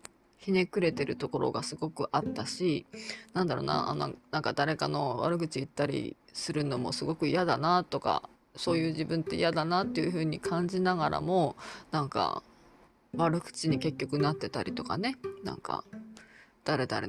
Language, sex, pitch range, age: Japanese, female, 150-240 Hz, 20-39